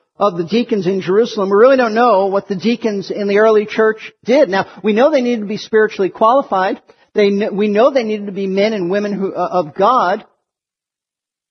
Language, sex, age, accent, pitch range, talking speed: English, male, 50-69, American, 185-235 Hz, 210 wpm